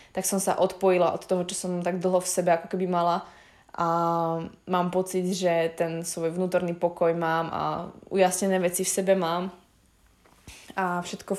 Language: Slovak